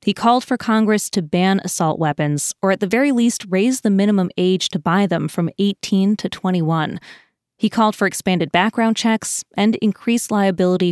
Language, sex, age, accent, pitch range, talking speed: English, female, 20-39, American, 175-220 Hz, 180 wpm